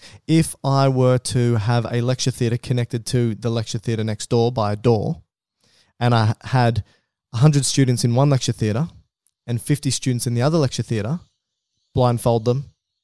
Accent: Australian